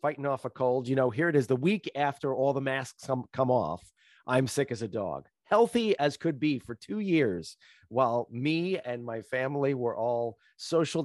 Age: 30-49